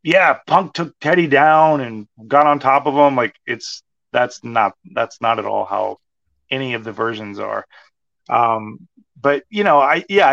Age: 30-49